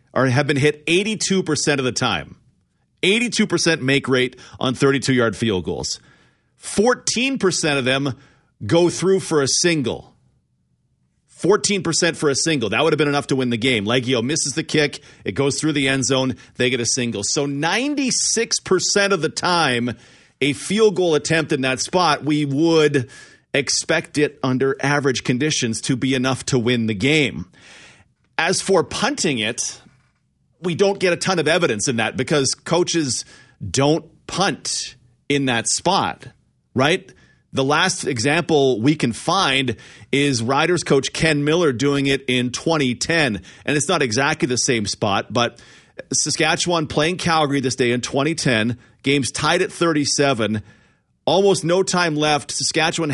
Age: 40-59